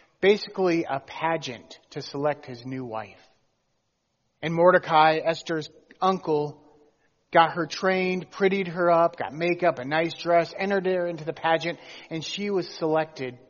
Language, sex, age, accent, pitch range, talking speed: English, male, 40-59, American, 145-175 Hz, 140 wpm